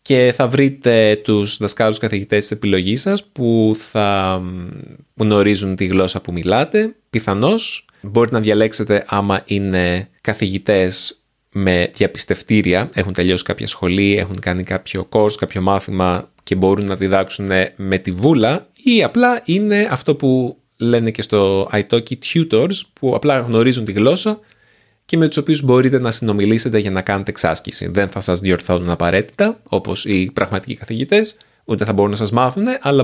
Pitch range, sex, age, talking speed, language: 95-125 Hz, male, 30-49, 155 wpm, Greek